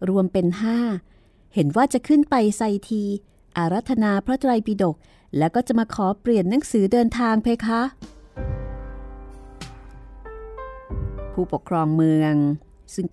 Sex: female